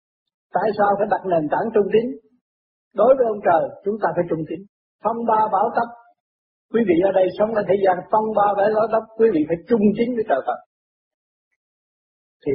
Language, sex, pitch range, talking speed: Vietnamese, male, 135-200 Hz, 200 wpm